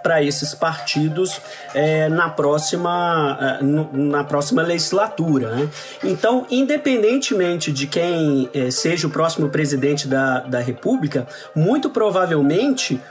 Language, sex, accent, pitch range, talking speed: Portuguese, male, Brazilian, 155-225 Hz, 95 wpm